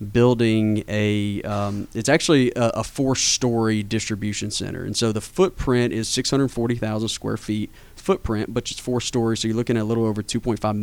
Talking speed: 170 wpm